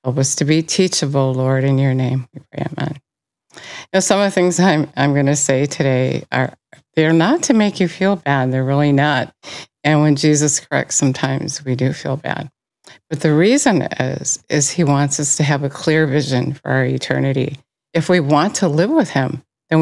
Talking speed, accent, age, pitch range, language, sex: 200 wpm, American, 50-69, 135-175 Hz, English, female